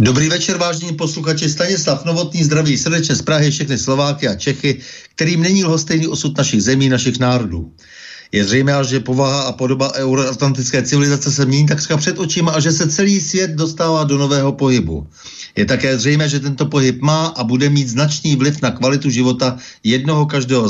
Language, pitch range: Czech, 125-150 Hz